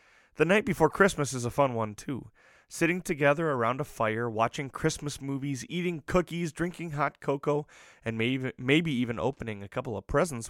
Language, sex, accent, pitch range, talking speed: English, male, American, 115-150 Hz, 175 wpm